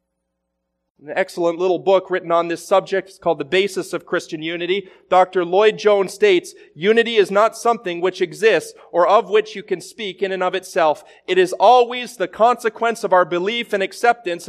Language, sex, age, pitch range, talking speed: English, male, 30-49, 155-215 Hz, 180 wpm